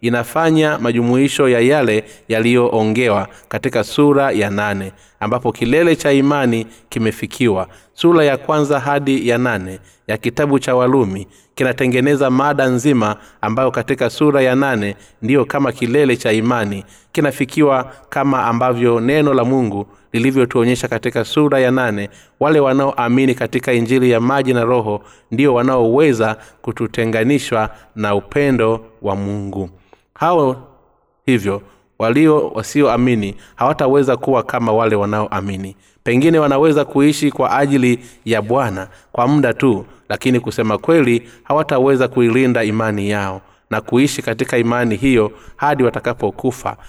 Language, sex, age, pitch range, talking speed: Swahili, male, 30-49, 105-135 Hz, 125 wpm